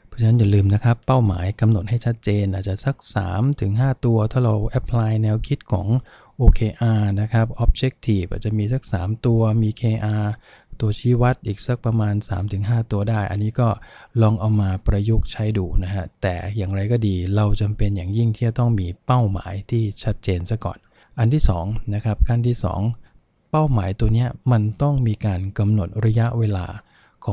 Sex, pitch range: male, 100-120 Hz